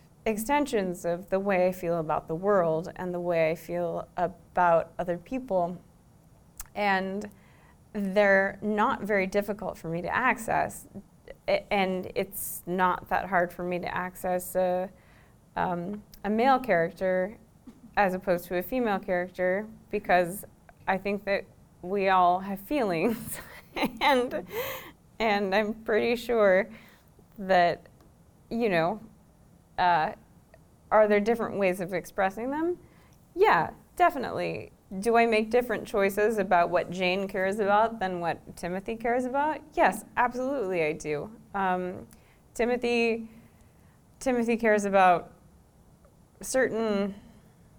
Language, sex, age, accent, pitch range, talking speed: English, female, 20-39, American, 175-215 Hz, 120 wpm